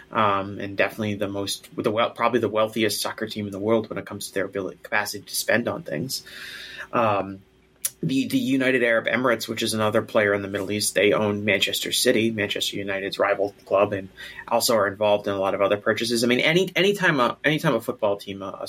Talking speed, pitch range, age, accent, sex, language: 220 wpm, 100-130 Hz, 30-49, American, male, English